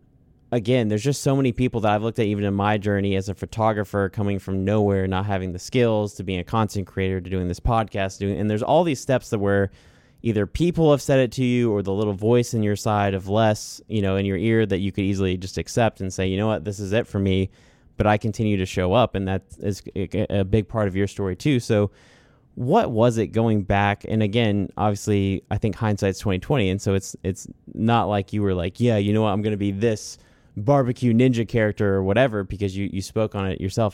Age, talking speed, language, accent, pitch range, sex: 20-39, 240 wpm, English, American, 95-115 Hz, male